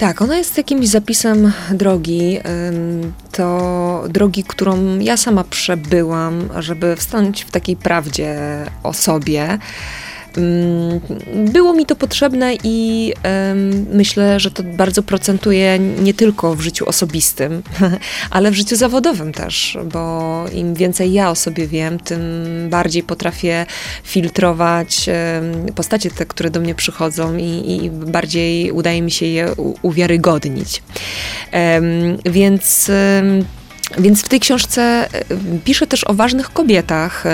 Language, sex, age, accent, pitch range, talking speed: Polish, female, 20-39, native, 170-205 Hz, 115 wpm